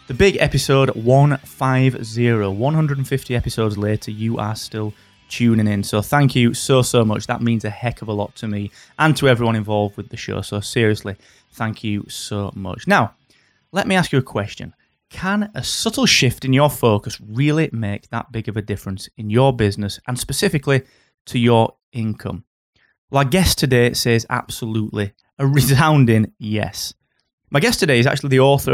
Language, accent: English, British